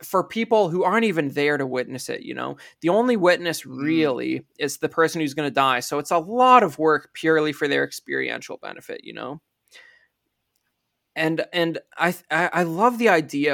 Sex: male